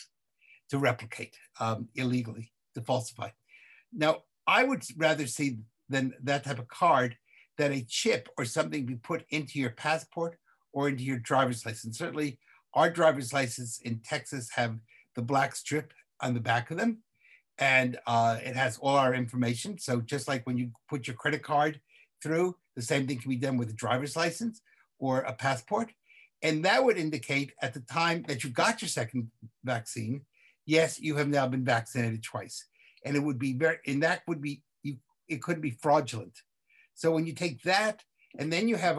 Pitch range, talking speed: 125-150 Hz, 185 wpm